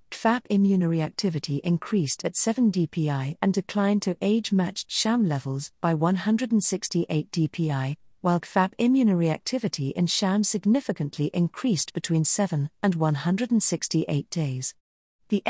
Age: 40-59